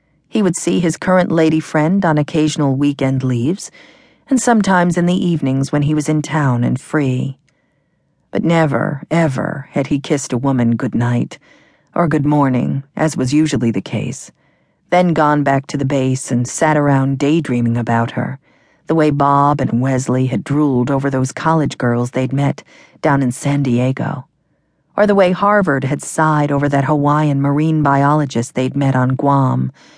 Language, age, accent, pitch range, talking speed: English, 50-69, American, 130-165 Hz, 170 wpm